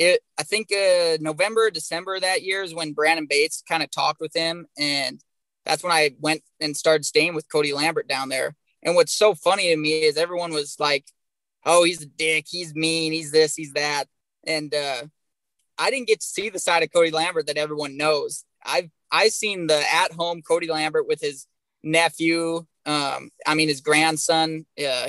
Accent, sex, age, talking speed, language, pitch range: American, male, 20-39, 195 wpm, English, 150-170 Hz